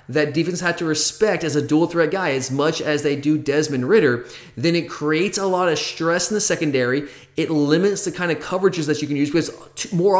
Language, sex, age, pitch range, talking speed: English, male, 30-49, 145-185 Hz, 230 wpm